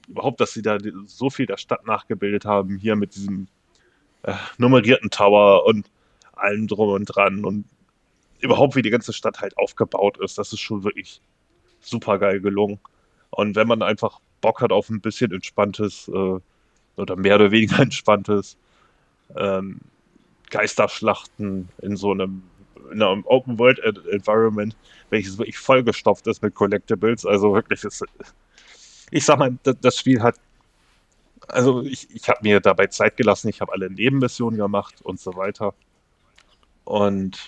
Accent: German